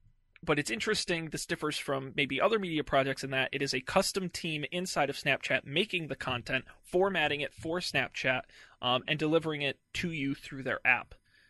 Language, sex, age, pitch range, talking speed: English, male, 20-39, 125-155 Hz, 190 wpm